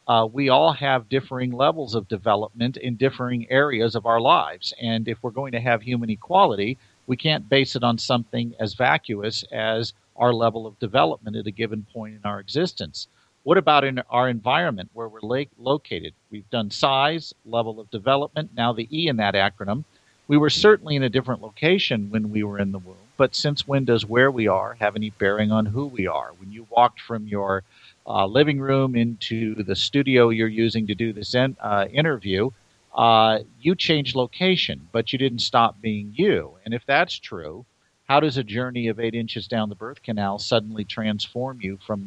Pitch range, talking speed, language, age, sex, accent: 110-135 Hz, 195 wpm, English, 50-69, male, American